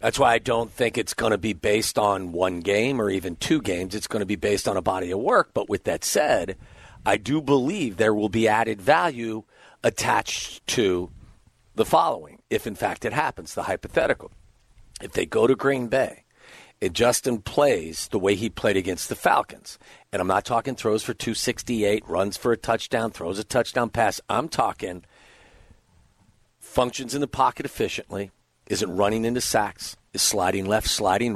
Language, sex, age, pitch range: English, male, 50-69, 100-130 Hz